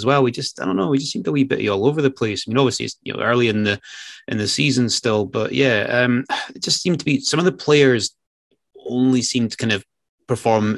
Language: English